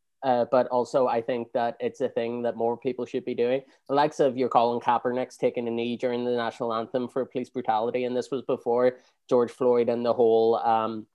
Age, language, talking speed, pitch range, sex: 20-39, English, 220 wpm, 115-125 Hz, male